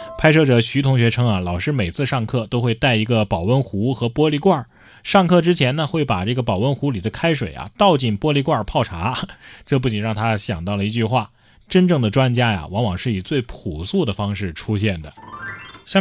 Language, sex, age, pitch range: Chinese, male, 20-39, 115-170 Hz